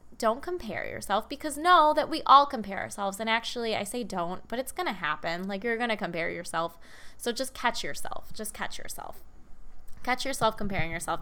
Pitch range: 200-275 Hz